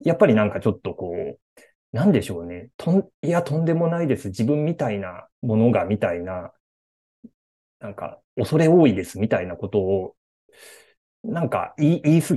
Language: Japanese